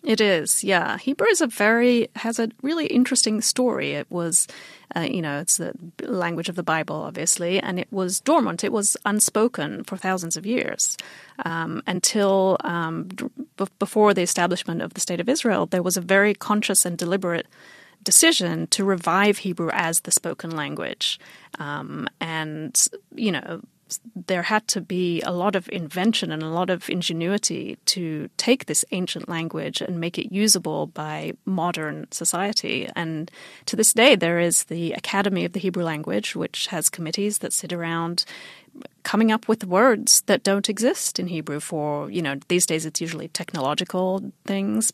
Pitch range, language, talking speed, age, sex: 165-210 Hz, English, 170 wpm, 30-49, female